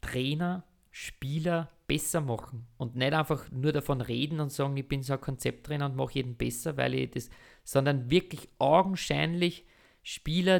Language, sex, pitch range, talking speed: German, male, 125-150 Hz, 160 wpm